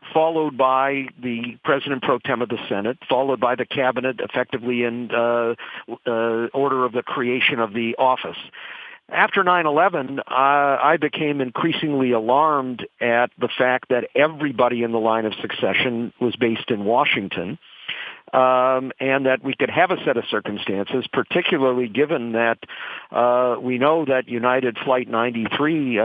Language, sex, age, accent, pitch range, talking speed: English, male, 50-69, American, 125-145 Hz, 150 wpm